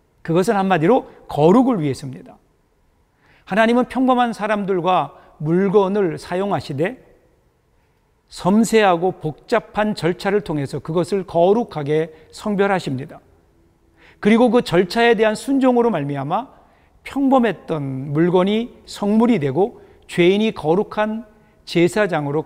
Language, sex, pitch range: Korean, male, 155-215 Hz